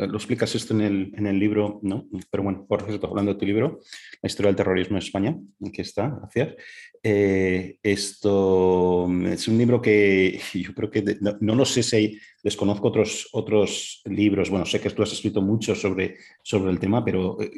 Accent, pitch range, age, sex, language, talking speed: Spanish, 95-110 Hz, 30-49, male, Spanish, 200 wpm